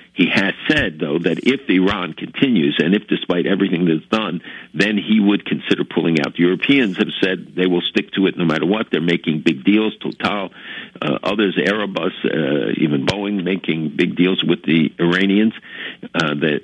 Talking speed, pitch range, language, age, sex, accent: 185 wpm, 80-95 Hz, English, 60-79, male, American